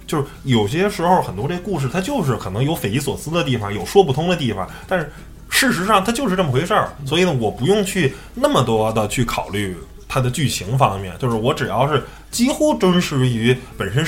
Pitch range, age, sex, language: 105-150 Hz, 20-39, male, Chinese